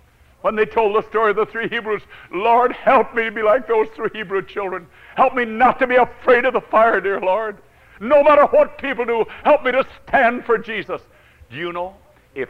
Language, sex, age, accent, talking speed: English, male, 60-79, American, 215 wpm